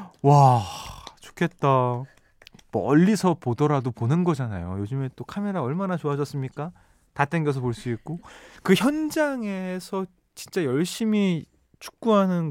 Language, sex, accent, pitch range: Korean, male, native, 120-200 Hz